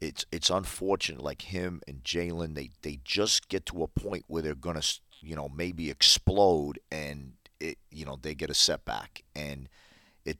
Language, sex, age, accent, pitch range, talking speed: English, male, 50-69, American, 70-85 Hz, 185 wpm